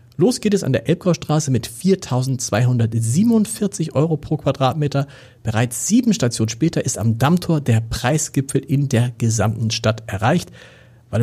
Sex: male